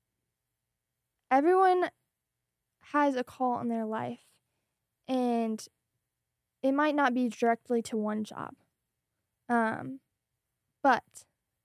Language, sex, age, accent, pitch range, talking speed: English, female, 10-29, American, 225-260 Hz, 95 wpm